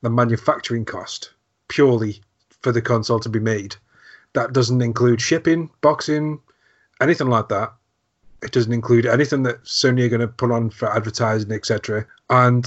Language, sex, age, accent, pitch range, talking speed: English, male, 30-49, British, 110-125 Hz, 155 wpm